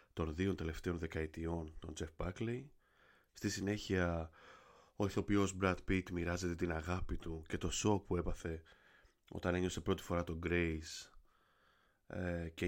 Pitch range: 85-105 Hz